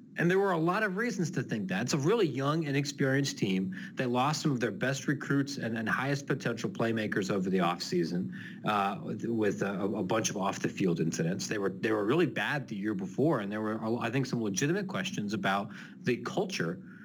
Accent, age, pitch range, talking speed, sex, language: American, 40-59, 120-170 Hz, 210 wpm, male, English